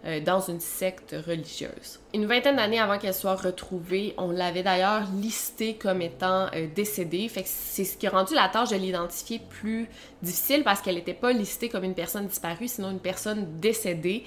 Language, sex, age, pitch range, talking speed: French, female, 20-39, 185-225 Hz, 185 wpm